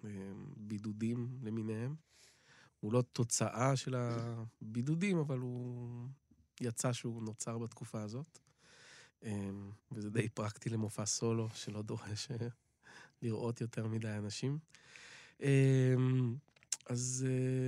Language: Hebrew